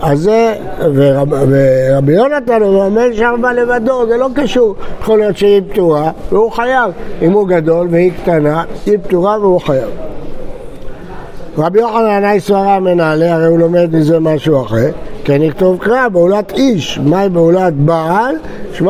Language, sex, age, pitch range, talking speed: Hebrew, male, 60-79, 160-210 Hz, 150 wpm